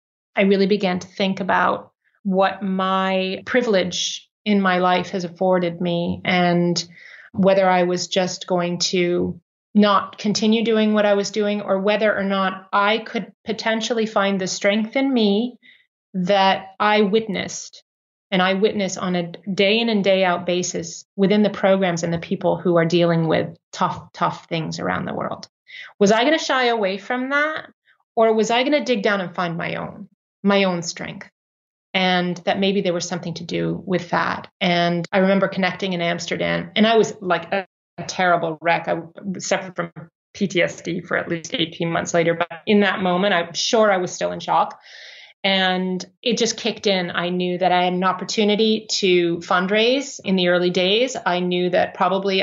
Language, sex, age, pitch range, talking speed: English, female, 30-49, 175-205 Hz, 185 wpm